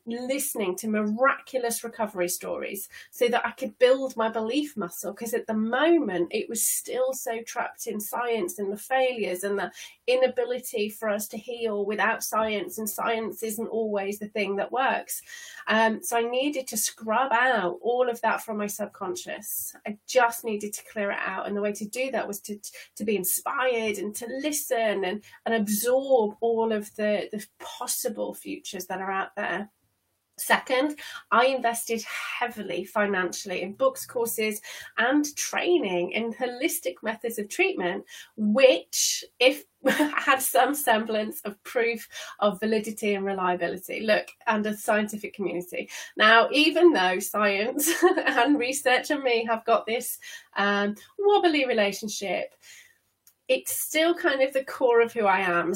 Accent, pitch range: British, 210-260 Hz